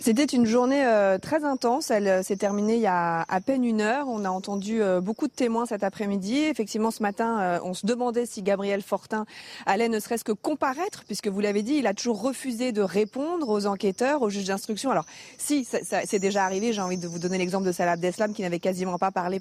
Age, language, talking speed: 30-49, French, 220 wpm